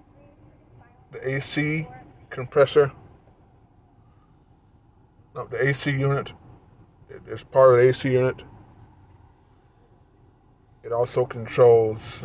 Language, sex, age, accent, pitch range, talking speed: English, male, 20-39, American, 115-140 Hz, 70 wpm